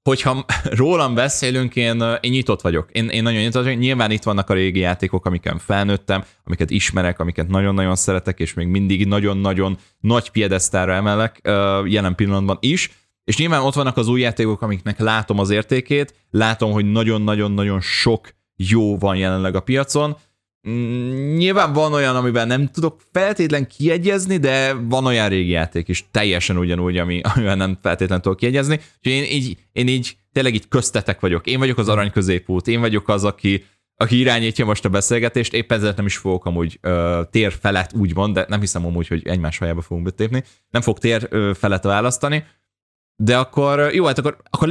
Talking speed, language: 170 wpm, Hungarian